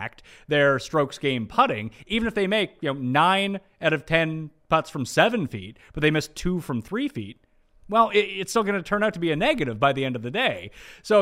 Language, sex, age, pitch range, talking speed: English, male, 30-49, 125-175 Hz, 235 wpm